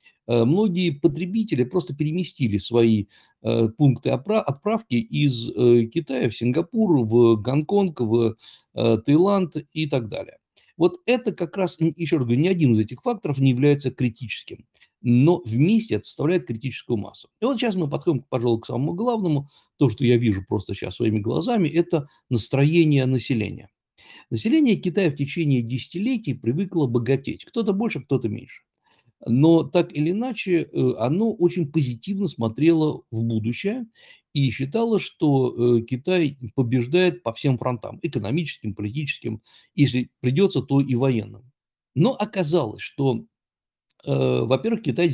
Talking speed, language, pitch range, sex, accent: 135 wpm, Russian, 120-170 Hz, male, native